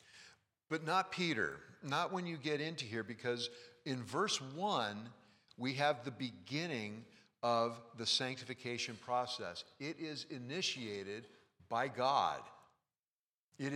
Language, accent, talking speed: English, American, 120 wpm